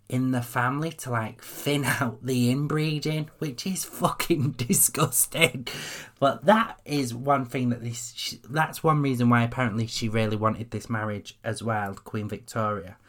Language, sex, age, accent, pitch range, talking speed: English, male, 20-39, British, 115-145 Hz, 155 wpm